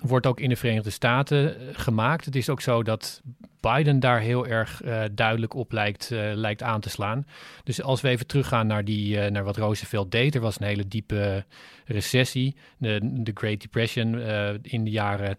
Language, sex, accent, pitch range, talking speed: Dutch, male, Dutch, 105-125 Hz, 190 wpm